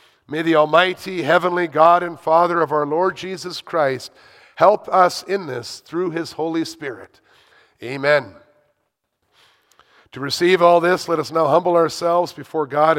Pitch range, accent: 135-175 Hz, American